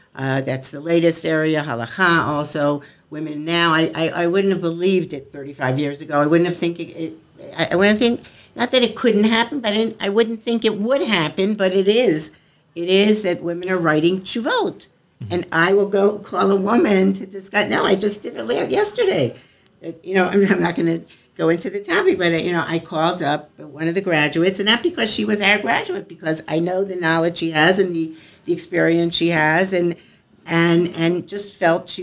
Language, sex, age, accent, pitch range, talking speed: English, female, 60-79, American, 155-190 Hz, 215 wpm